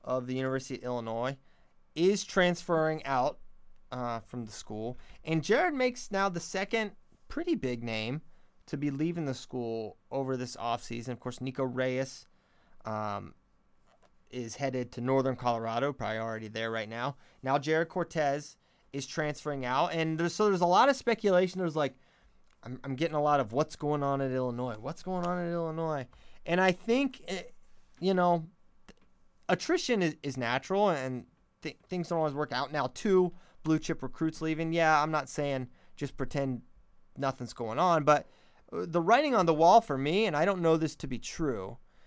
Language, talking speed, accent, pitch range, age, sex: English, 175 wpm, American, 130-185 Hz, 20-39, male